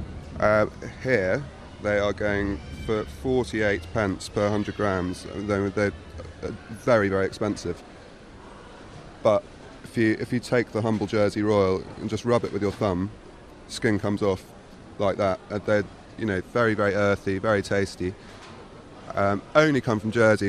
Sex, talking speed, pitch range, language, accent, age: male, 150 wpm, 95-115 Hz, English, British, 30-49